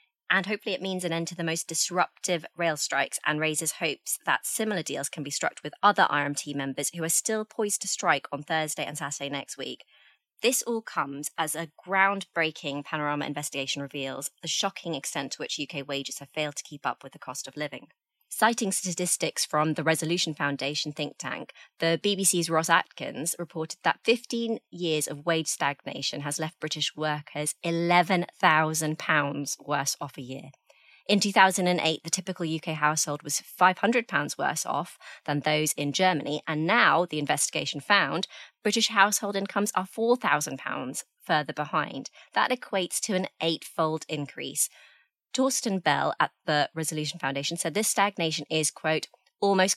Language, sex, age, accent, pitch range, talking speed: English, female, 20-39, British, 145-190 Hz, 165 wpm